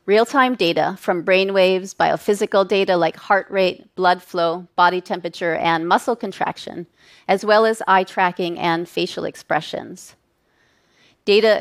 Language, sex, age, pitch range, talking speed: Russian, female, 30-49, 175-215 Hz, 130 wpm